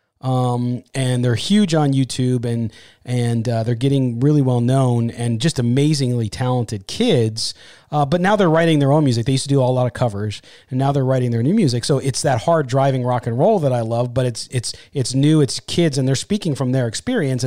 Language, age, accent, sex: English, 30-49, American, male